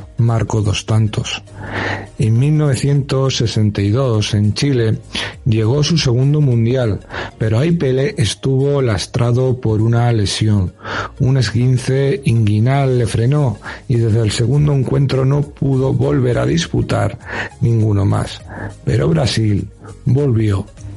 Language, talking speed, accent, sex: Spanish, 110 wpm, Spanish, male